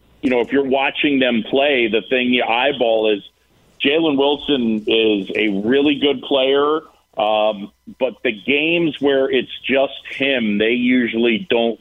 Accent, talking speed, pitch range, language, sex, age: American, 150 wpm, 120-145 Hz, English, male, 40-59